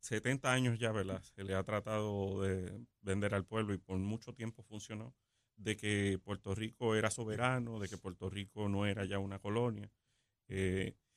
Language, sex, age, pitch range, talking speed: Spanish, male, 30-49, 100-115 Hz, 175 wpm